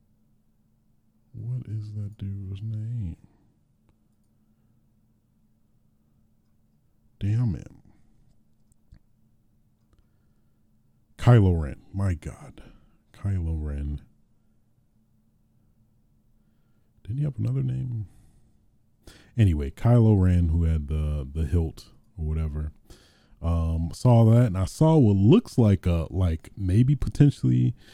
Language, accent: English, American